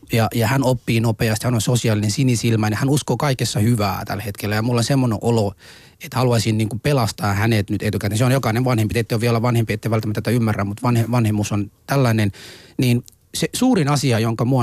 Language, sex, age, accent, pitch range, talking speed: Finnish, male, 30-49, native, 110-135 Hz, 200 wpm